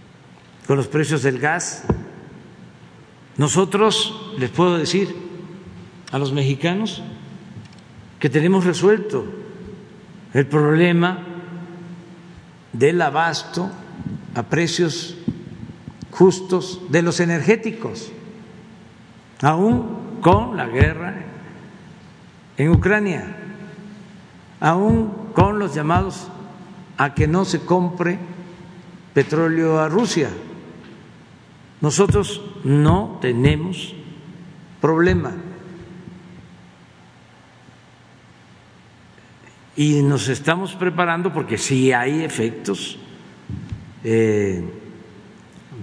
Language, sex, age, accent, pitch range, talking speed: Spanish, male, 60-79, Mexican, 140-180 Hz, 75 wpm